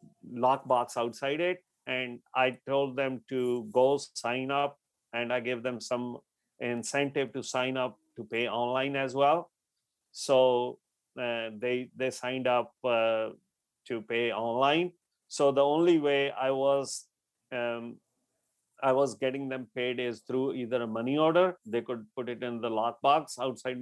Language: English